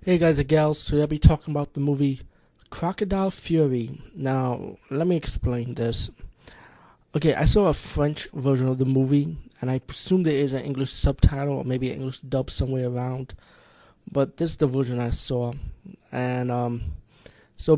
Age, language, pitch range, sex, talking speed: 20-39, English, 125-150 Hz, male, 175 wpm